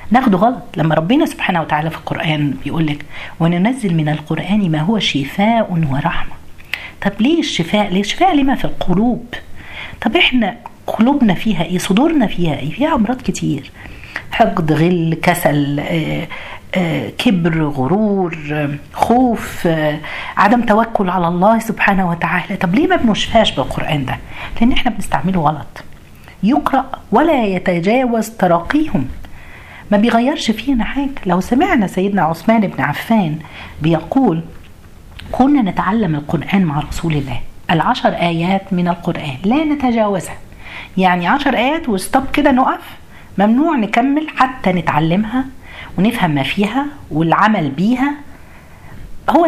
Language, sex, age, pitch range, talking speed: Arabic, female, 50-69, 160-245 Hz, 125 wpm